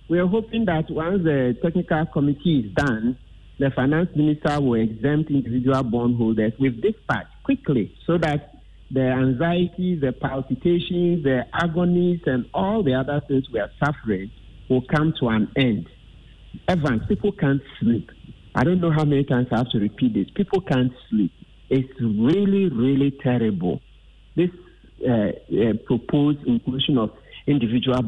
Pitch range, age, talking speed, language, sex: 120-155 Hz, 50-69, 150 wpm, English, male